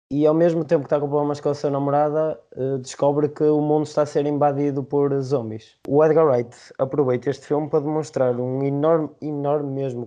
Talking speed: 205 wpm